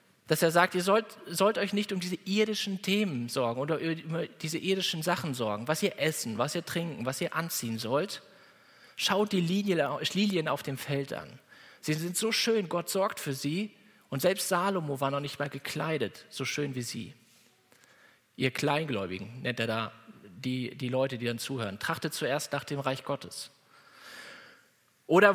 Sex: male